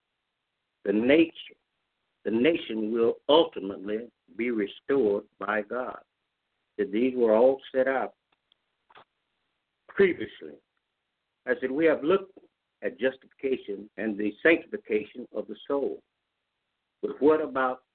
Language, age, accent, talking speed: English, 60-79, American, 110 wpm